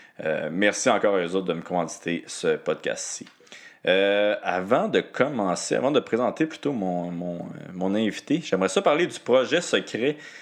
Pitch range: 90-130 Hz